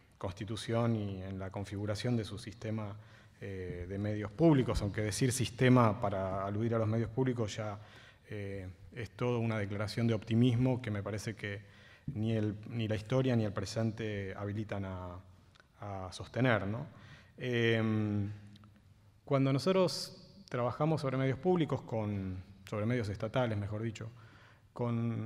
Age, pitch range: 20-39, 105-135 Hz